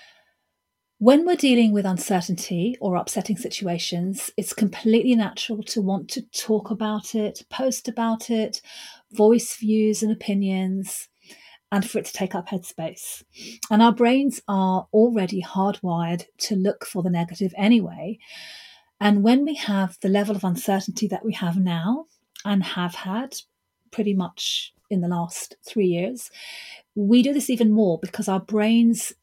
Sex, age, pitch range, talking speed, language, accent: female, 40-59, 185-225 Hz, 150 wpm, English, British